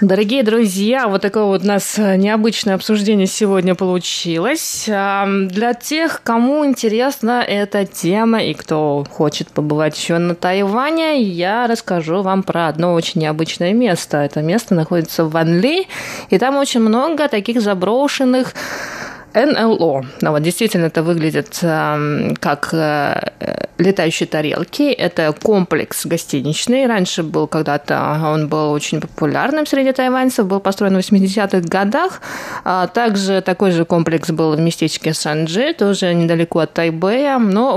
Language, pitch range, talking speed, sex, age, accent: Russian, 170-225 Hz, 130 wpm, female, 20-39, native